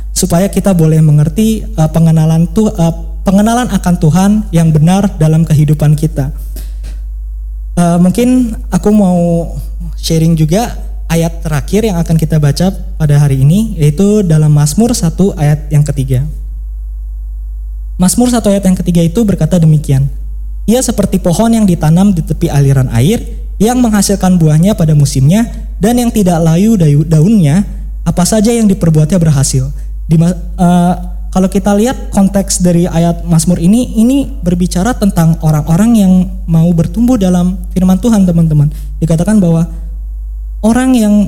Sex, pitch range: male, 155-200 Hz